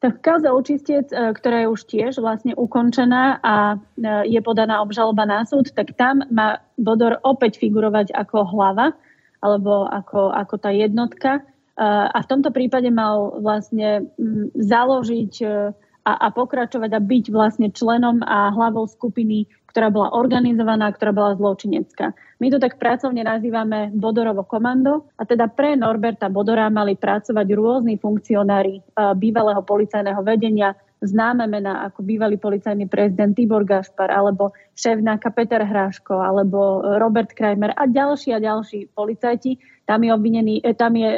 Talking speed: 140 wpm